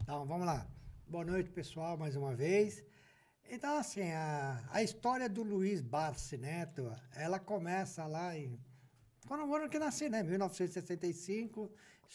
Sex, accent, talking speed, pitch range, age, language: male, Brazilian, 145 wpm, 150-225 Hz, 60-79, Portuguese